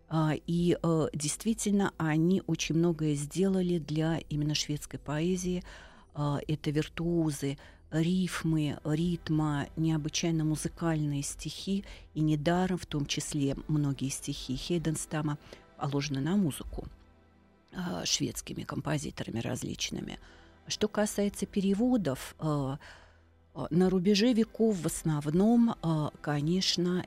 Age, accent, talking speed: 40-59, native, 90 wpm